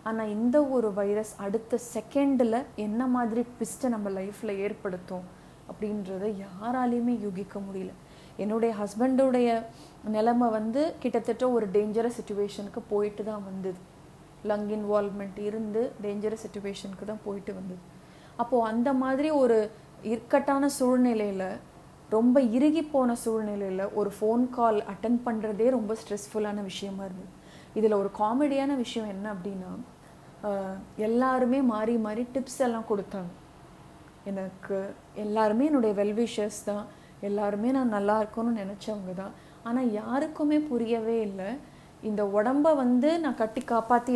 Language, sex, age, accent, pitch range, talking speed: Tamil, female, 20-39, native, 205-240 Hz, 120 wpm